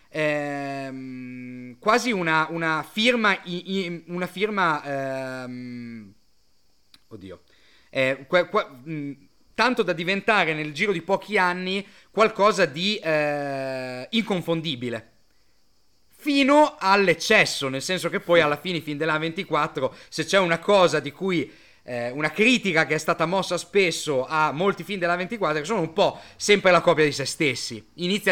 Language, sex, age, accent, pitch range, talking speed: Italian, male, 30-49, native, 150-195 Hz, 135 wpm